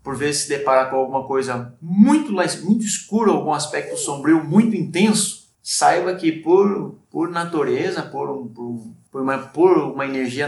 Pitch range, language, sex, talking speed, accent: 125-180 Hz, Portuguese, male, 160 wpm, Brazilian